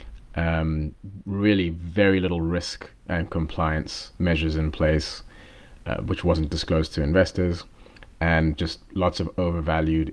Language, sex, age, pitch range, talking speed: English, male, 30-49, 80-90 Hz, 125 wpm